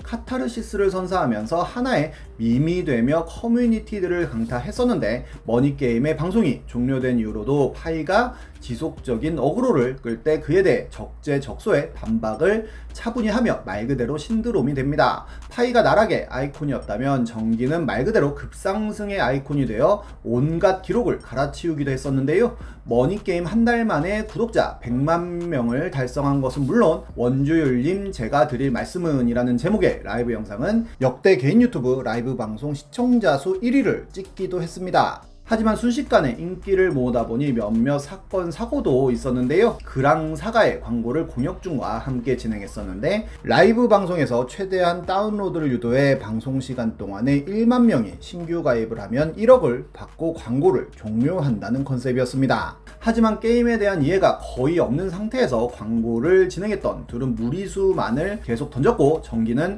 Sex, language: male, Korean